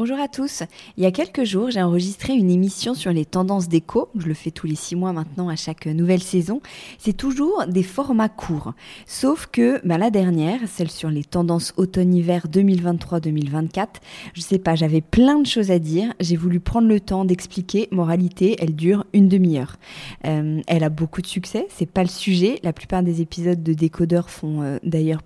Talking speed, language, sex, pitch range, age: 200 wpm, French, female, 165-210 Hz, 20-39